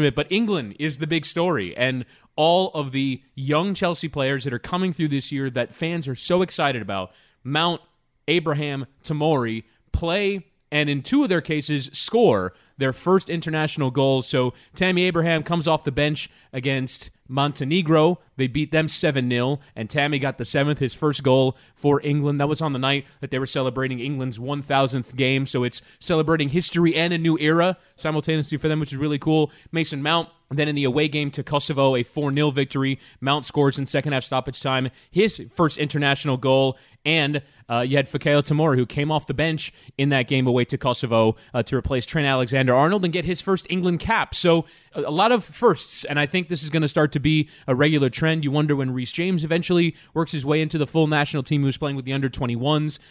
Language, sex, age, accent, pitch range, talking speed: English, male, 20-39, American, 135-160 Hz, 200 wpm